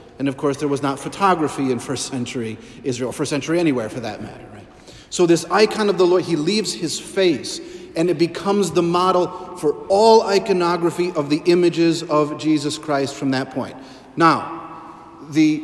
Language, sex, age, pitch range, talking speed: English, male, 40-59, 135-170 Hz, 180 wpm